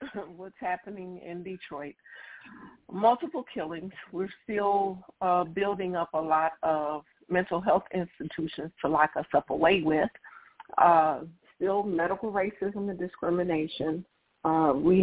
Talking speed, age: 125 wpm, 50-69